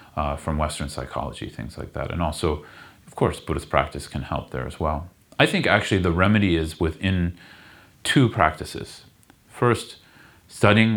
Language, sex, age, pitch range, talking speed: English, male, 30-49, 80-95 Hz, 160 wpm